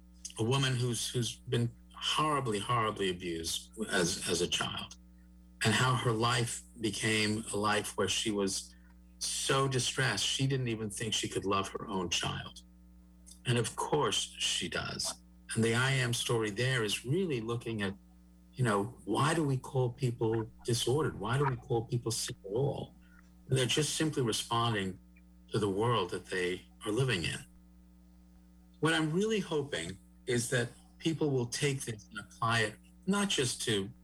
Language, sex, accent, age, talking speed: English, male, American, 50-69, 165 wpm